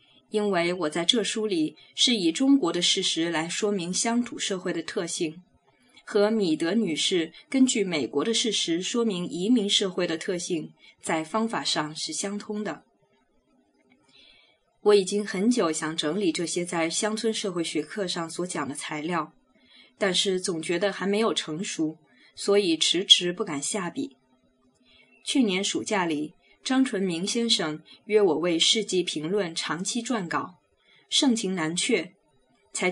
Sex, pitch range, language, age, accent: female, 170-225 Hz, Chinese, 20-39, native